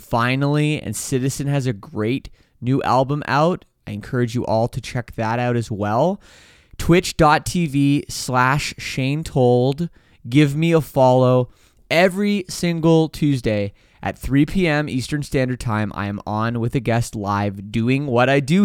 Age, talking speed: 20-39, 150 wpm